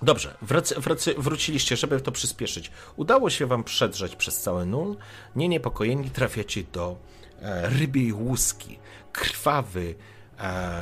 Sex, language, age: male, Polish, 40-59